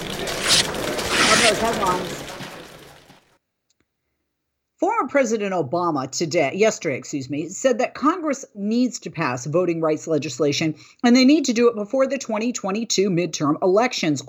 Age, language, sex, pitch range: 50-69, English, female, 160-230 Hz